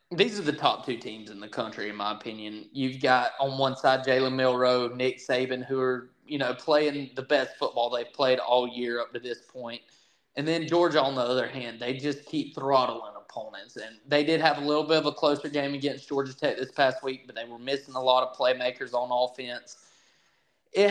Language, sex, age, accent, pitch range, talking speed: English, male, 20-39, American, 125-150 Hz, 220 wpm